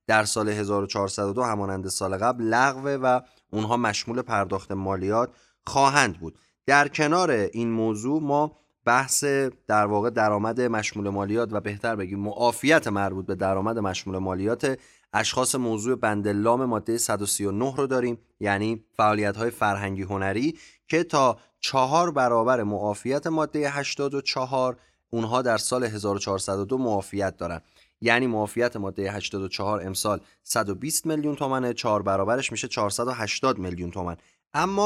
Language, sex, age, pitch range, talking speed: Persian, male, 30-49, 100-135 Hz, 125 wpm